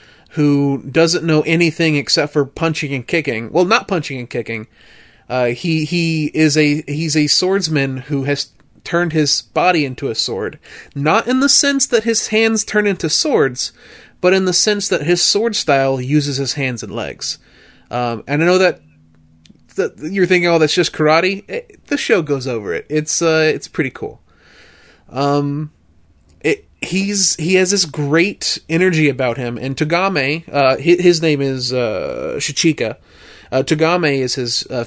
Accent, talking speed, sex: American, 170 wpm, male